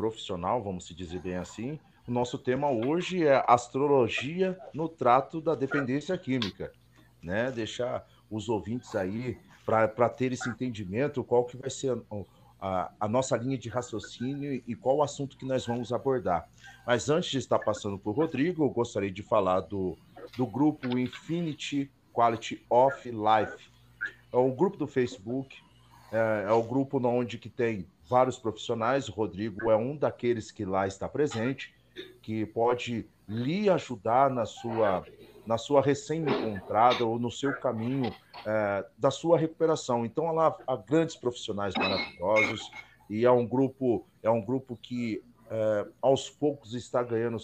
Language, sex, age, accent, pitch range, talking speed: Portuguese, male, 40-59, Brazilian, 110-140 Hz, 155 wpm